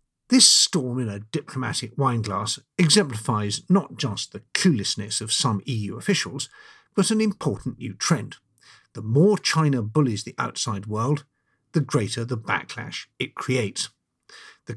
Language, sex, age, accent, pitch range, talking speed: English, male, 50-69, British, 110-155 Hz, 140 wpm